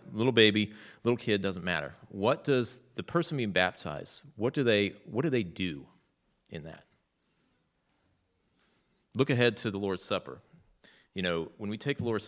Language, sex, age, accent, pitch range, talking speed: English, male, 30-49, American, 95-120 Hz, 155 wpm